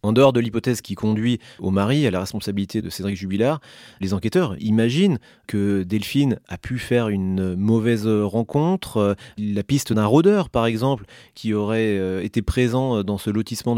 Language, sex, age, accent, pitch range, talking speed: French, male, 30-49, French, 105-130 Hz, 165 wpm